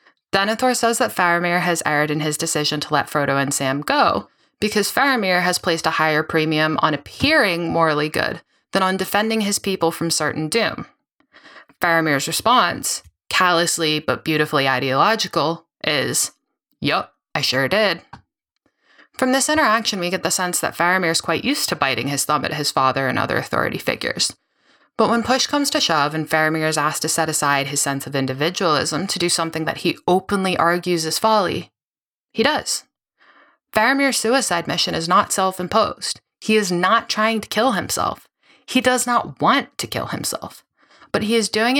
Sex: female